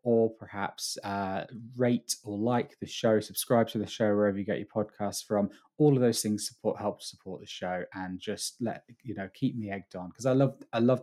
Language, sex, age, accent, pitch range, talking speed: English, male, 20-39, British, 95-115 Hz, 225 wpm